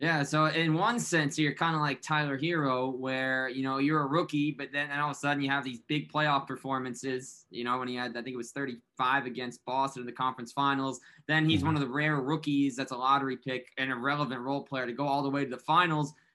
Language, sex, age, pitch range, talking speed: English, male, 20-39, 135-160 Hz, 255 wpm